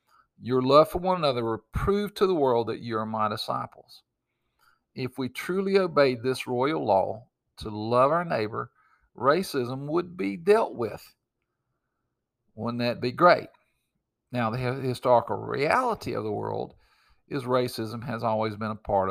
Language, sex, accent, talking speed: English, male, American, 155 wpm